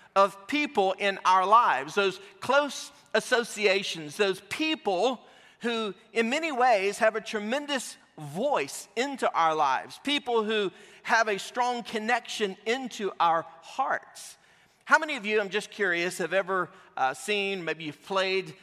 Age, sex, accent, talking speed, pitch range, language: 40-59, male, American, 140 wpm, 180-235 Hz, English